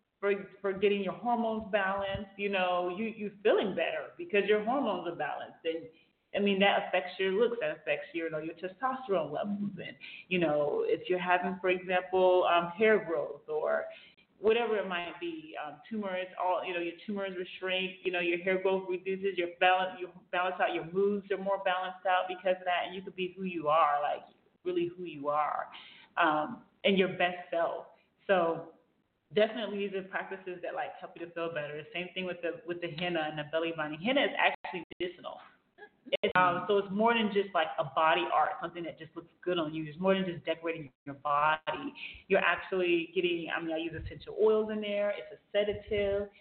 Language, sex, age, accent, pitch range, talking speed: English, male, 30-49, American, 175-210 Hz, 205 wpm